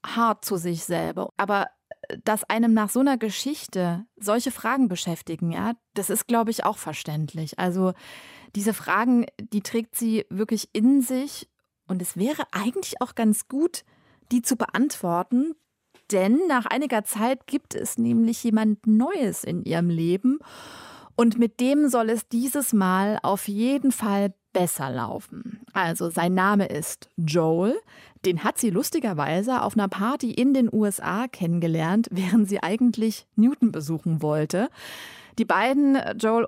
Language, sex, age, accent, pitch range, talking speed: German, female, 30-49, German, 185-240 Hz, 145 wpm